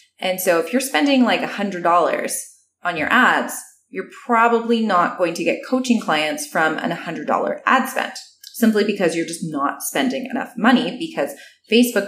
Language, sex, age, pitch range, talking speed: English, female, 20-39, 170-255 Hz, 165 wpm